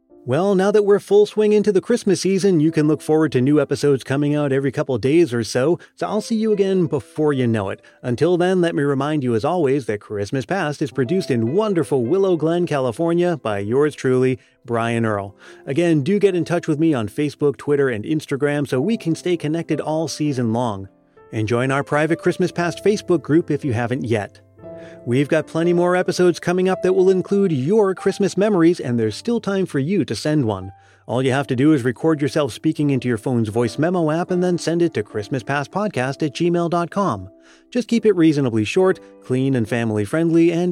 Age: 30-49